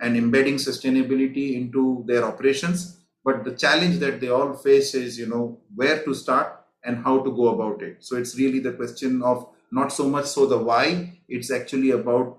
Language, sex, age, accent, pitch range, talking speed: English, male, 30-49, Indian, 120-140 Hz, 195 wpm